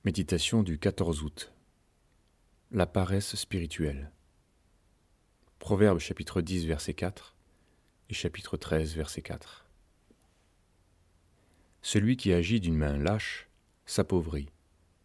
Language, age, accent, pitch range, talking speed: French, 40-59, French, 80-95 Hz, 95 wpm